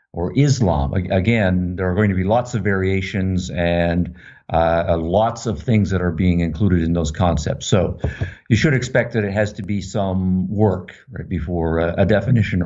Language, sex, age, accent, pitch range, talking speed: English, male, 50-69, American, 95-110 Hz, 180 wpm